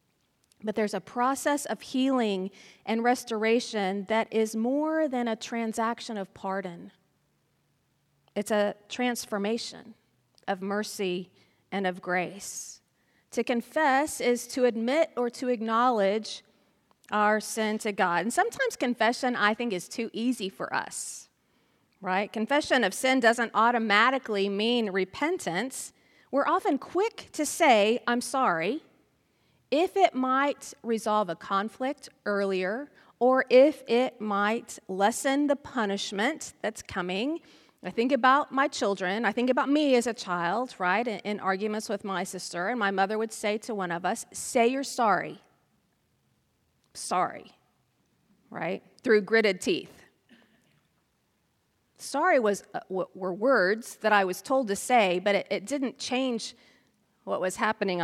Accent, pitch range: American, 200-255 Hz